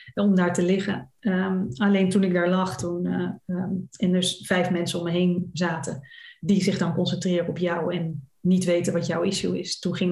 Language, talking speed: Dutch, 215 wpm